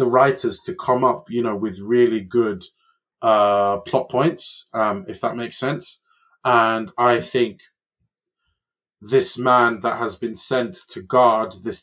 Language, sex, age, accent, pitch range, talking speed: English, male, 20-39, British, 110-140 Hz, 150 wpm